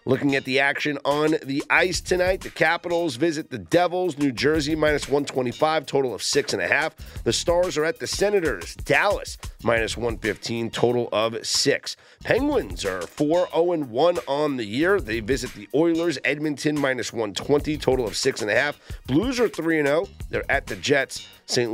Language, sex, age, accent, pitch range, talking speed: English, male, 30-49, American, 120-170 Hz, 180 wpm